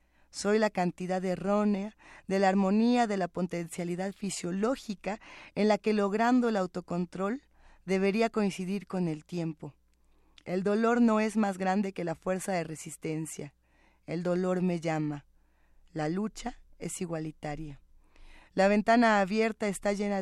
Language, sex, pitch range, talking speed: Spanish, female, 170-205 Hz, 135 wpm